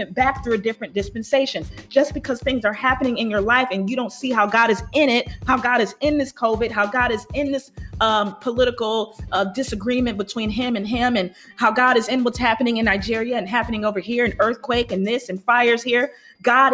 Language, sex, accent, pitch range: English, female, American, 200-245 Hz